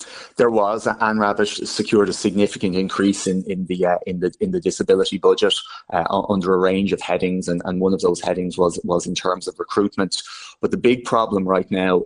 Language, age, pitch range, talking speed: English, 20-39, 90-100 Hz, 210 wpm